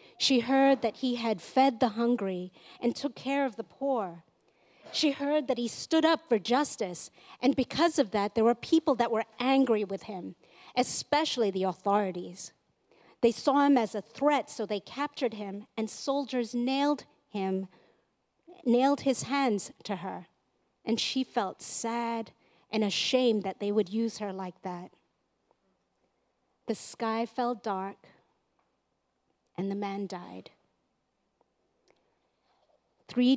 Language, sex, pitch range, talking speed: English, female, 205-270 Hz, 140 wpm